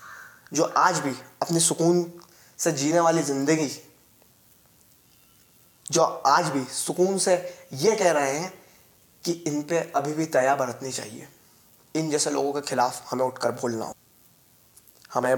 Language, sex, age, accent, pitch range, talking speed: Hindi, male, 20-39, native, 130-150 Hz, 140 wpm